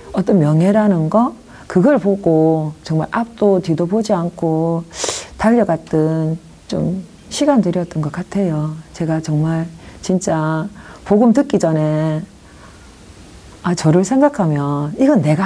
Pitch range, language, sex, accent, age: 155-200 Hz, Korean, female, native, 40-59